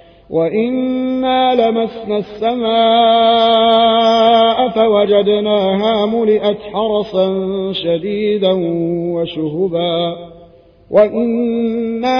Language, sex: Arabic, male